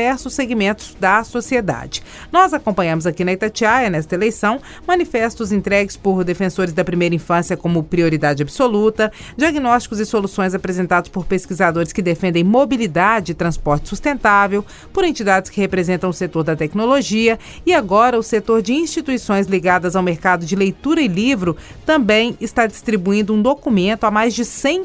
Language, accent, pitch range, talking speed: Portuguese, Brazilian, 180-245 Hz, 150 wpm